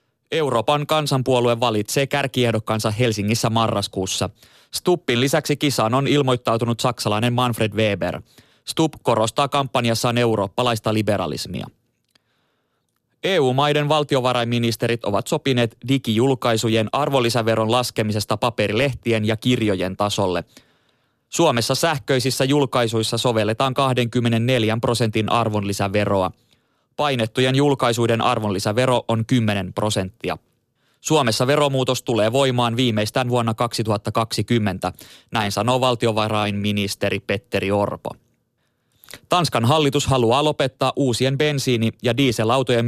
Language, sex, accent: Finnish, male, native